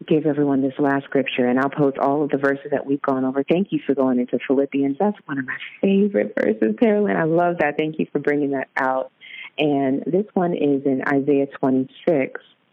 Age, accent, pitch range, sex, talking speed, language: 40-59, American, 140-170 Hz, female, 210 wpm, English